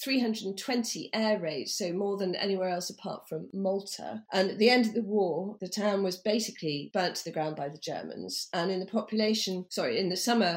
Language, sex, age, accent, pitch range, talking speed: English, female, 40-59, British, 165-200 Hz, 215 wpm